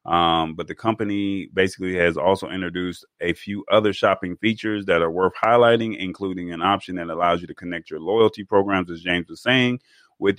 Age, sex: 30-49, male